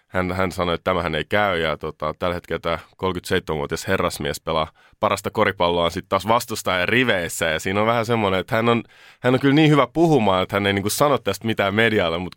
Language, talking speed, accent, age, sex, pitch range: Finnish, 215 wpm, native, 20-39, male, 90-110 Hz